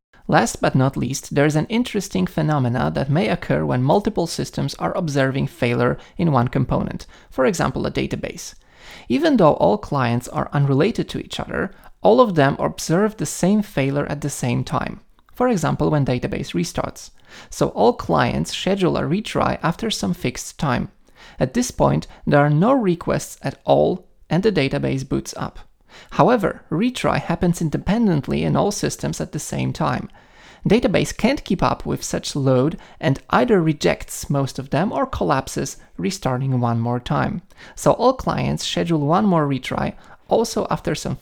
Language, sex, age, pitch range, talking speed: English, male, 20-39, 130-180 Hz, 165 wpm